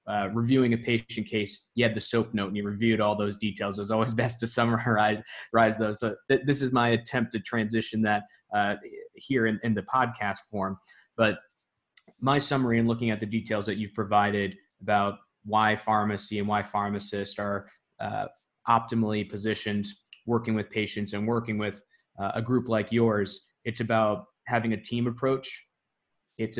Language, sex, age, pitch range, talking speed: English, male, 20-39, 105-115 Hz, 180 wpm